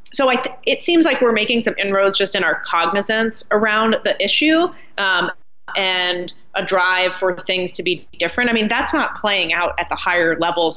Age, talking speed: 30-49, 200 wpm